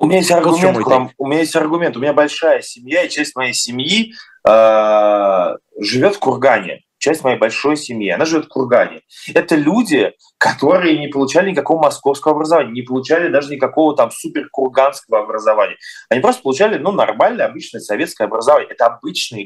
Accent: native